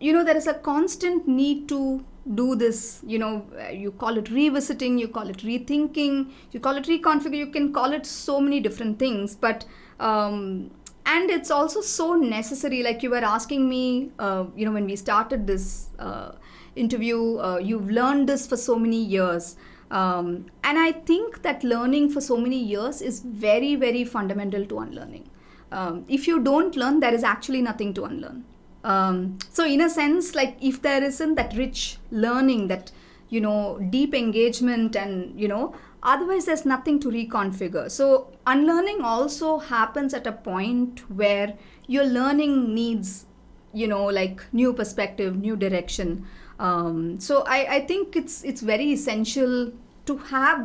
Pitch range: 215-280 Hz